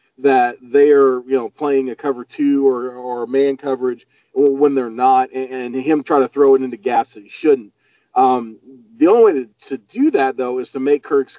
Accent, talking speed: American, 210 wpm